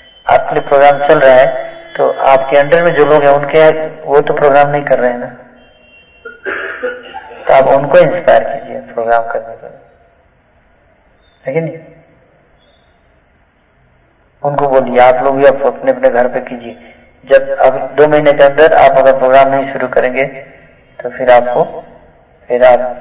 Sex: male